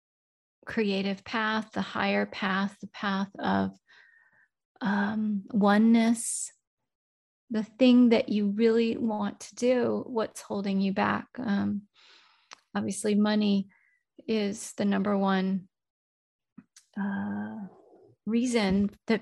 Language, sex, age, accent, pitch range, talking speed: English, female, 30-49, American, 195-225 Hz, 100 wpm